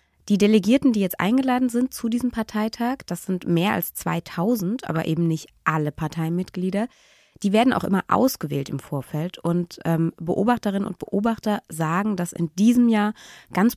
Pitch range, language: 170-225 Hz, German